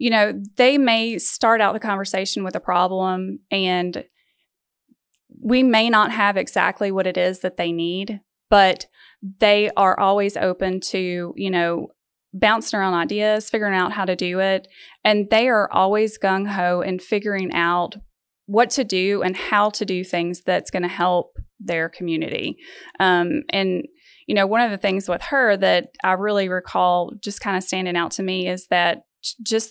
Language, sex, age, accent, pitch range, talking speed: English, female, 20-39, American, 180-215 Hz, 175 wpm